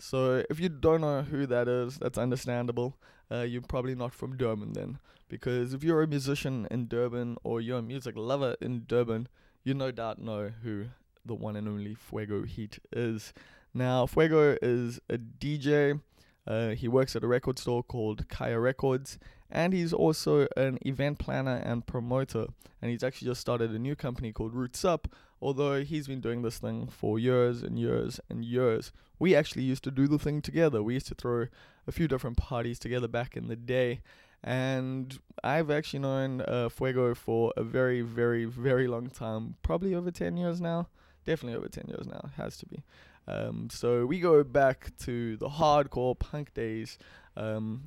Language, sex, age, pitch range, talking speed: English, male, 20-39, 115-135 Hz, 185 wpm